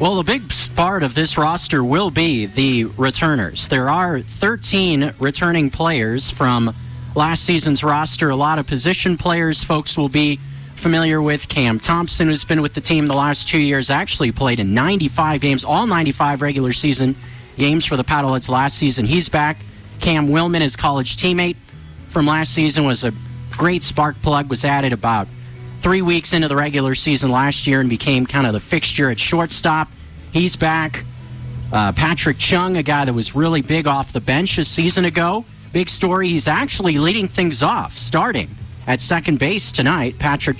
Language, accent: English, American